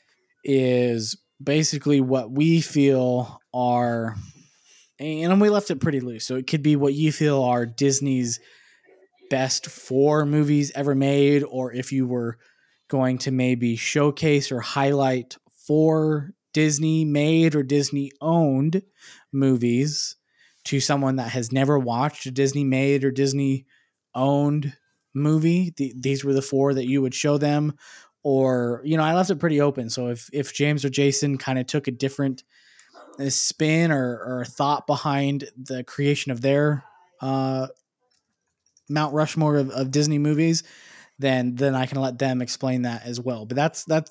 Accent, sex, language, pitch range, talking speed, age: American, male, English, 125-150 Hz, 155 wpm, 20-39